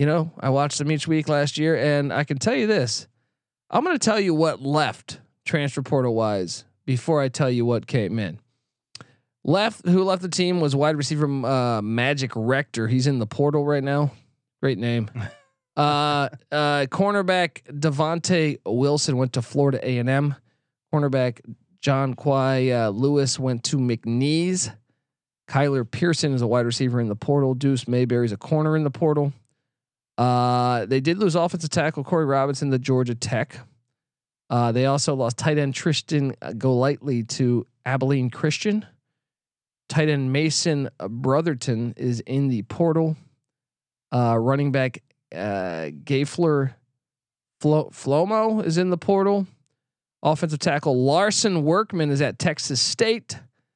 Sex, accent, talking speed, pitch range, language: male, American, 150 wpm, 125-155 Hz, English